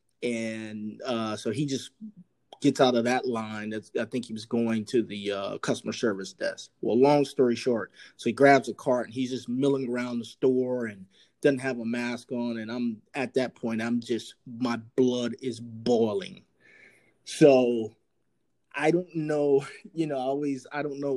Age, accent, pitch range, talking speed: 30-49, American, 110-135 Hz, 185 wpm